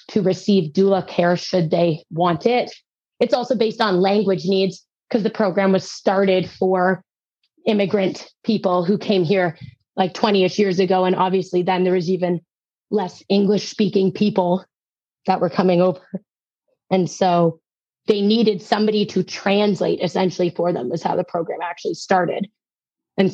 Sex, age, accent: female, 20-39, American